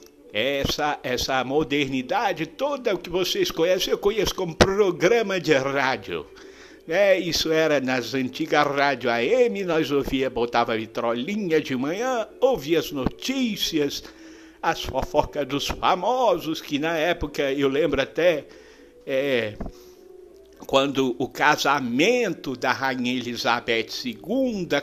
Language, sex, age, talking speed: Portuguese, male, 60-79, 110 wpm